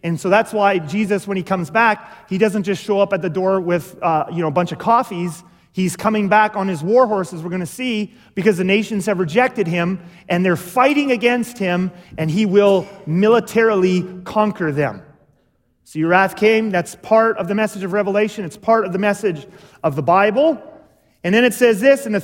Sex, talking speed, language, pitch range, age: male, 215 wpm, English, 170-220 Hz, 30-49